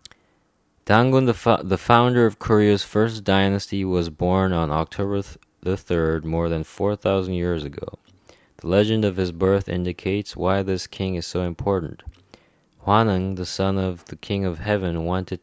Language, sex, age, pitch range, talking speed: English, male, 20-39, 85-95 Hz, 165 wpm